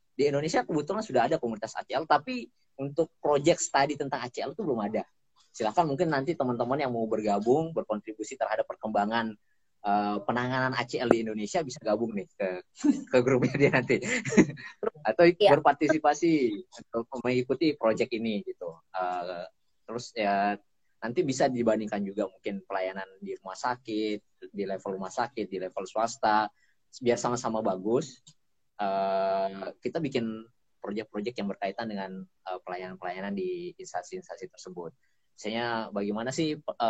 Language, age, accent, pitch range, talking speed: Indonesian, 20-39, native, 95-130 Hz, 130 wpm